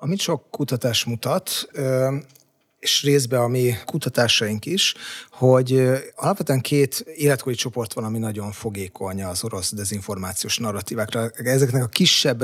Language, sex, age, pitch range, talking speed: Hungarian, male, 30-49, 115-135 Hz, 125 wpm